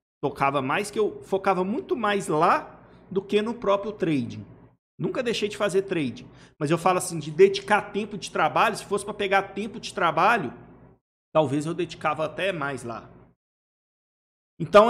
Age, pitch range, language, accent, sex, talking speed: 50-69, 155-210 Hz, Portuguese, Brazilian, male, 165 wpm